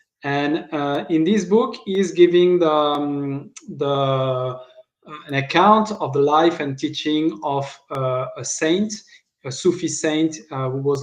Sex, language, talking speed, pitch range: male, English, 135 wpm, 140-175 Hz